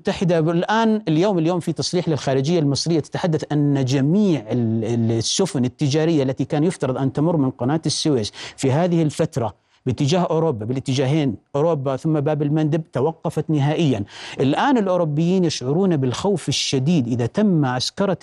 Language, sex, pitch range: Arabic, male, 135-170 Hz